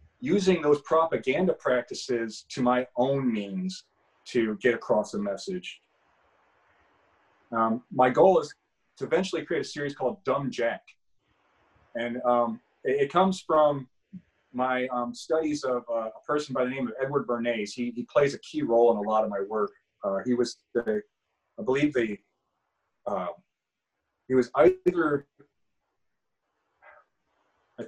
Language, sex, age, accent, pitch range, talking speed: English, male, 40-59, American, 120-160 Hz, 145 wpm